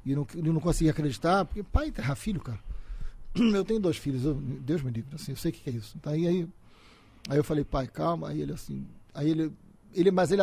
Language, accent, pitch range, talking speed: Portuguese, Brazilian, 115-155 Hz, 245 wpm